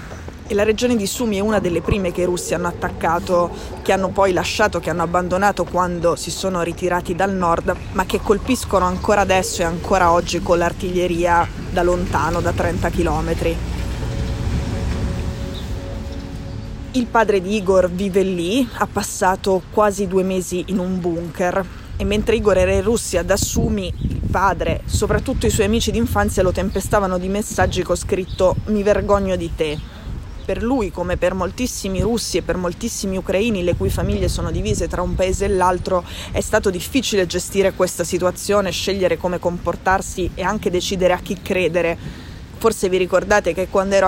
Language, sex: Italian, female